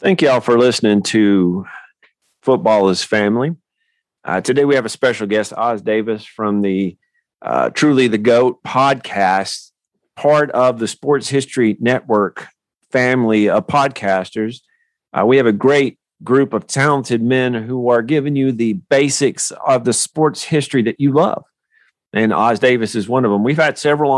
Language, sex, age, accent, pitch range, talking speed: English, male, 40-59, American, 110-145 Hz, 160 wpm